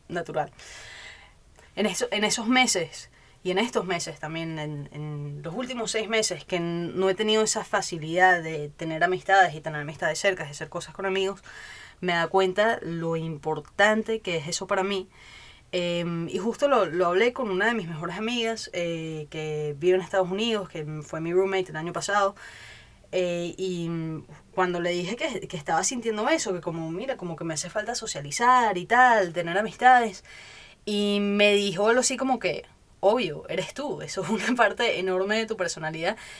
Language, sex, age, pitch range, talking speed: Spanish, female, 20-39, 165-210 Hz, 185 wpm